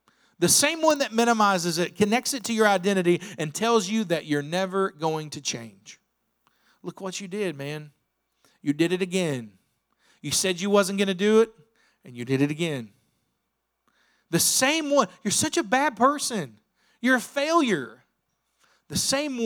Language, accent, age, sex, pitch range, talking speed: English, American, 40-59, male, 145-210 Hz, 170 wpm